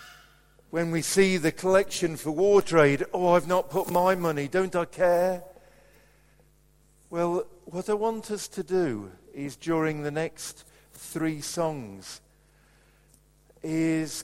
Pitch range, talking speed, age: 145-180 Hz, 130 wpm, 50-69